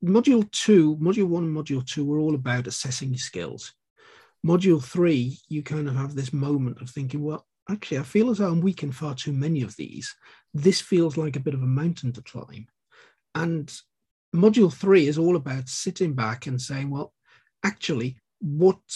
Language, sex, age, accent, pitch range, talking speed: English, male, 50-69, British, 130-170 Hz, 185 wpm